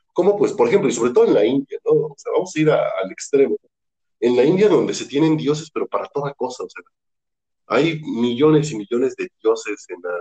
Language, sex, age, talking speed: Spanish, male, 40-59, 235 wpm